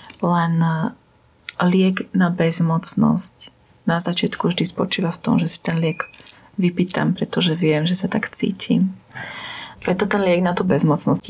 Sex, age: female, 30-49